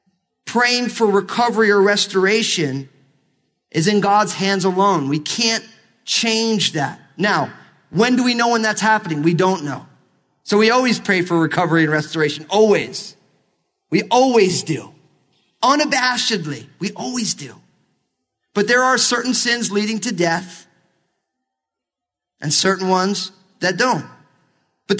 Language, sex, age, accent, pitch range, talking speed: English, male, 40-59, American, 155-220 Hz, 130 wpm